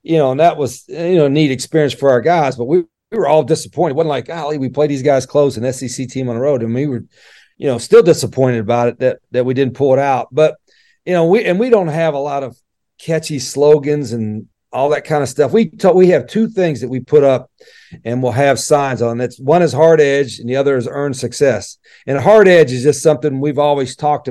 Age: 40-59